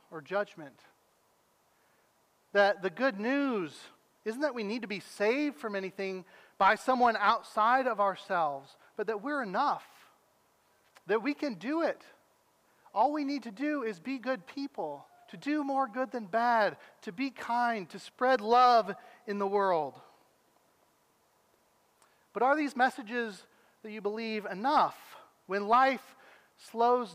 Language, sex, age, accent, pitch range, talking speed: English, male, 40-59, American, 205-260 Hz, 140 wpm